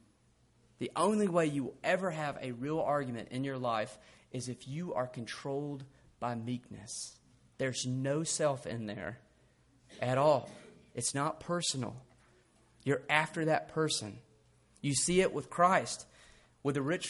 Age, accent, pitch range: 30-49, American, 120-165 Hz